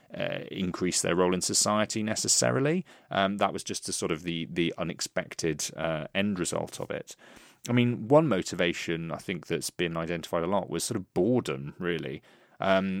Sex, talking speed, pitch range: male, 180 wpm, 85-105 Hz